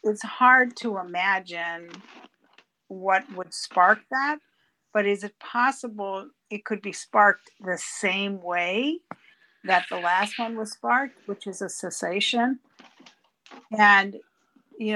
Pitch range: 180-215 Hz